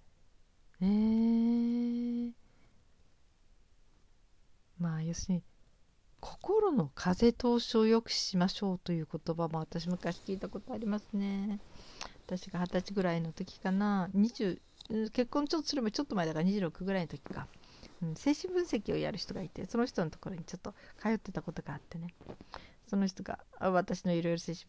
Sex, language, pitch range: female, Japanese, 155-210 Hz